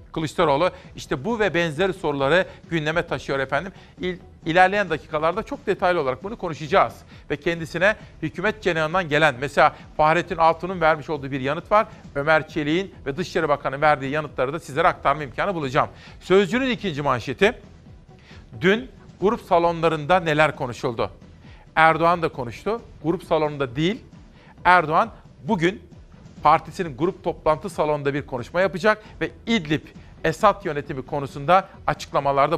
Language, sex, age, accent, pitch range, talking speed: Turkish, male, 50-69, native, 150-190 Hz, 130 wpm